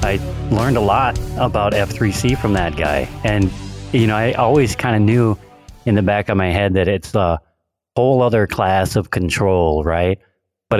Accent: American